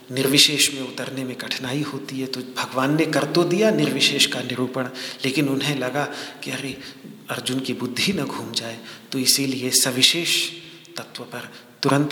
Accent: native